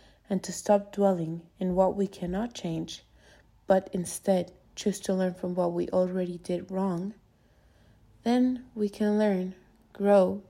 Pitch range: 175-225 Hz